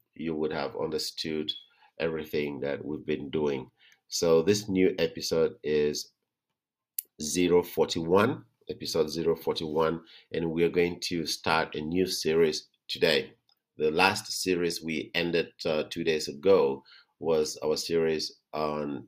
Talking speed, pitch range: 125 wpm, 75-100 Hz